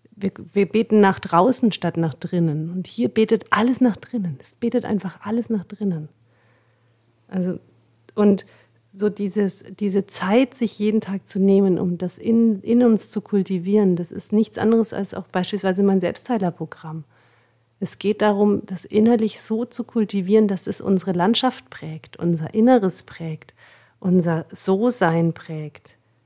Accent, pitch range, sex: German, 150-210 Hz, female